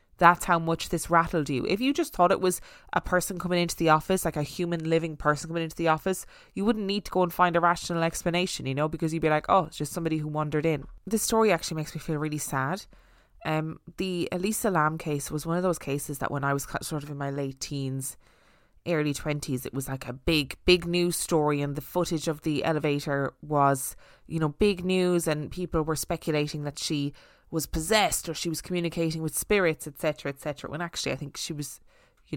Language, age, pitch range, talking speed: English, 20-39, 145-175 Hz, 230 wpm